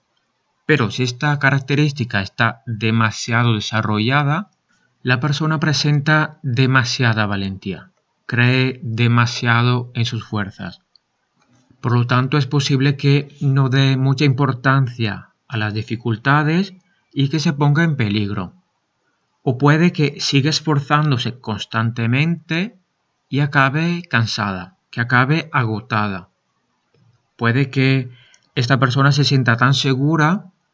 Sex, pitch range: male, 115-150 Hz